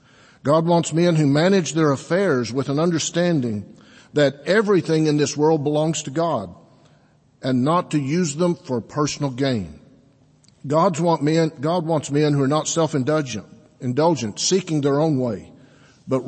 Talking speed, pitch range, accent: 140 wpm, 125-165 Hz, American